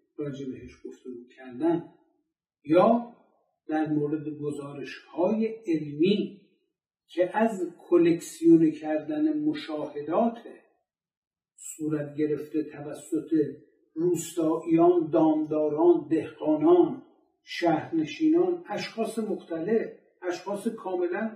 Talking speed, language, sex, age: 65 wpm, Persian, male, 50-69